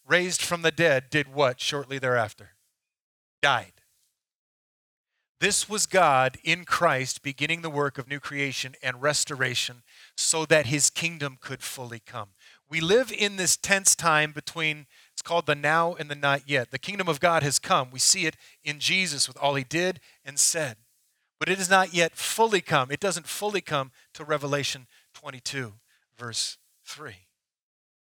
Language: English